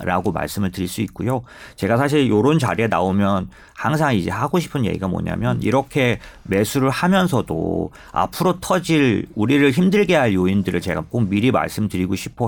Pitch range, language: 95-135 Hz, Korean